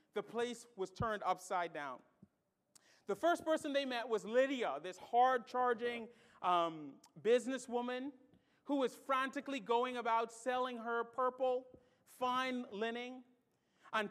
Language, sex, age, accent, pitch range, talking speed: English, male, 40-59, American, 225-270 Hz, 115 wpm